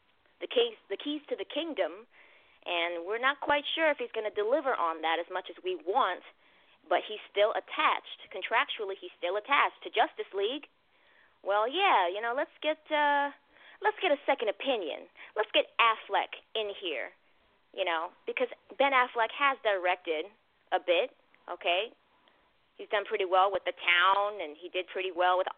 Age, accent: 20-39, American